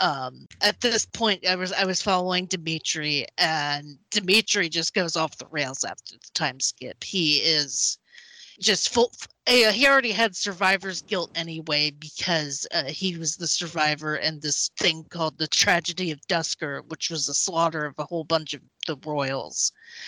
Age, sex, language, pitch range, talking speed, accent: 30-49, female, English, 160-210 Hz, 160 wpm, American